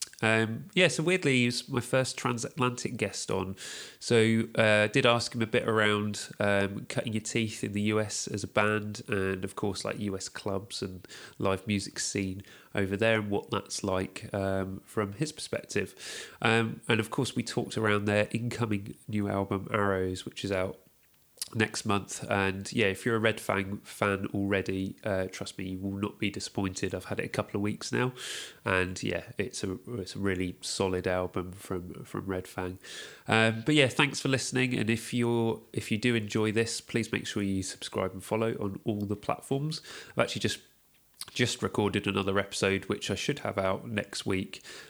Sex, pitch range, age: male, 95-115 Hz, 30-49